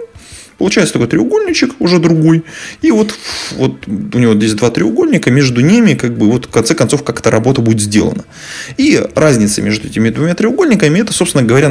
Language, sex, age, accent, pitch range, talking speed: Russian, male, 20-39, native, 105-130 Hz, 175 wpm